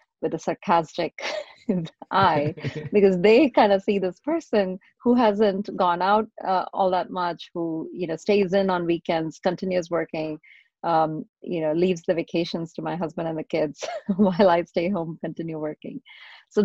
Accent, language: Indian, English